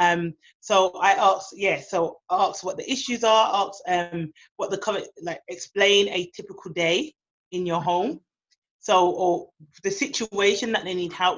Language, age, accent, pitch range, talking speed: English, 30-49, British, 170-215 Hz, 180 wpm